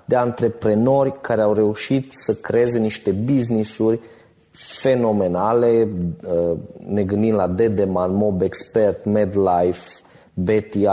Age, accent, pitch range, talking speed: 30-49, native, 105-135 Hz, 95 wpm